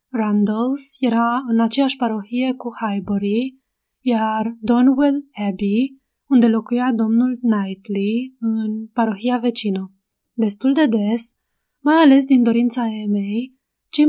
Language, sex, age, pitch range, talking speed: Romanian, female, 20-39, 215-255 Hz, 110 wpm